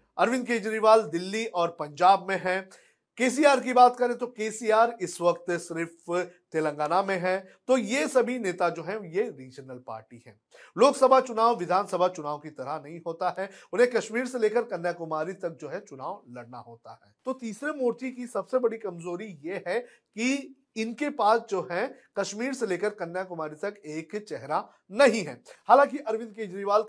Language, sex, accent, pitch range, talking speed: Hindi, male, native, 175-240 Hz, 170 wpm